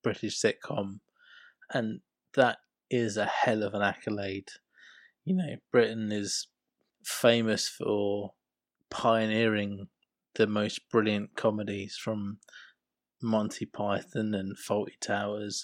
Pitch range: 105-115 Hz